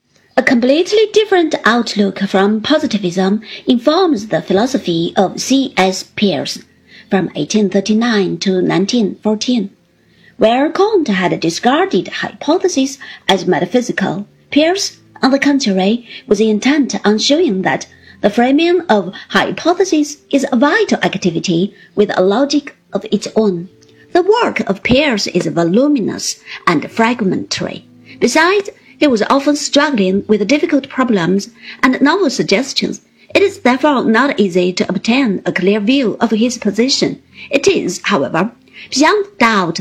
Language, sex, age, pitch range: Chinese, female, 50-69, 195-280 Hz